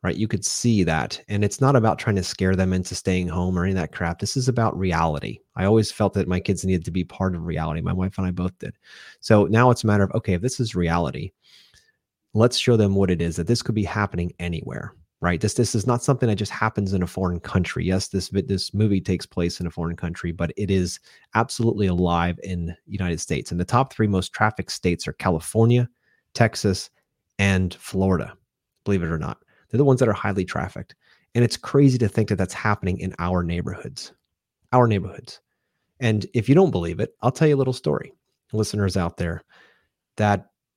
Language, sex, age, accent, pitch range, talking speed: English, male, 30-49, American, 90-115 Hz, 220 wpm